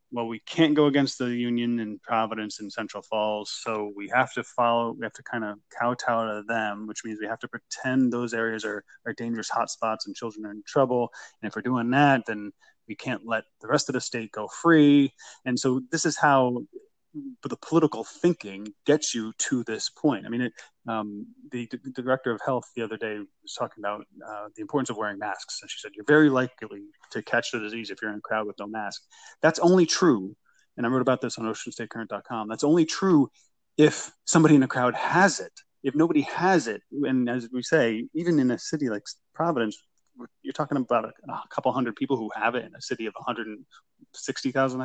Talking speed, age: 215 wpm, 20-39